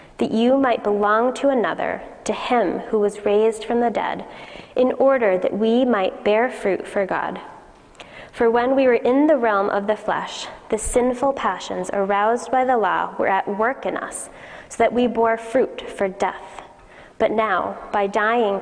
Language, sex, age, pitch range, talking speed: English, female, 20-39, 205-255 Hz, 180 wpm